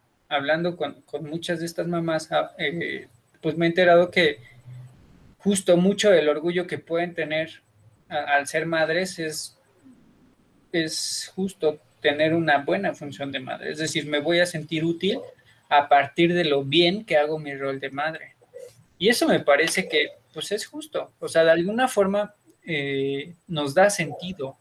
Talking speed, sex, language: 165 wpm, male, Spanish